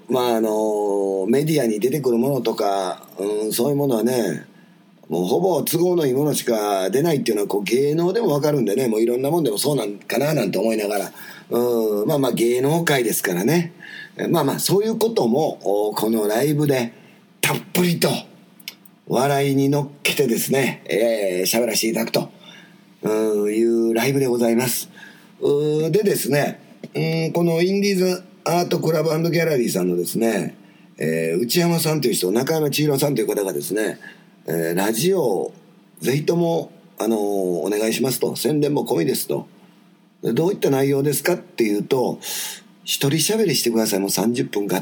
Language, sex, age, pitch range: Japanese, male, 40-59, 110-160 Hz